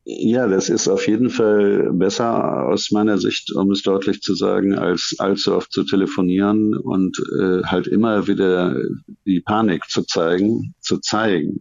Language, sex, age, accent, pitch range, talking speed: German, male, 50-69, German, 90-100 Hz, 160 wpm